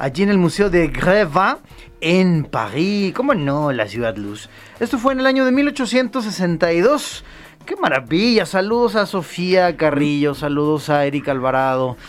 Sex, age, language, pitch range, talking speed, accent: male, 30-49, Spanish, 125-180 Hz, 150 wpm, Mexican